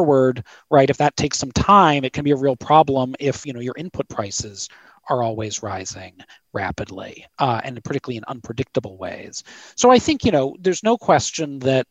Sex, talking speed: male, 185 wpm